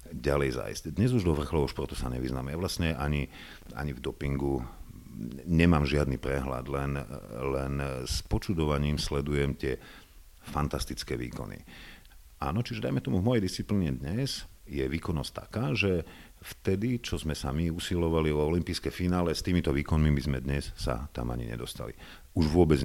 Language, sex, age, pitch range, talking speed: Slovak, male, 50-69, 70-85 Hz, 150 wpm